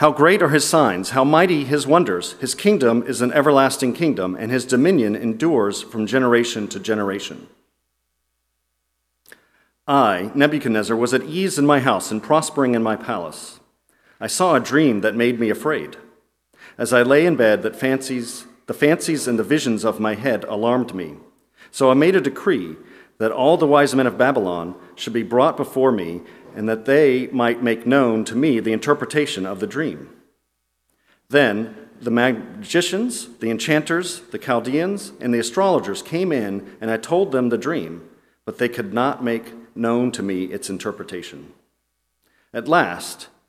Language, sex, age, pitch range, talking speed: English, male, 40-59, 110-140 Hz, 165 wpm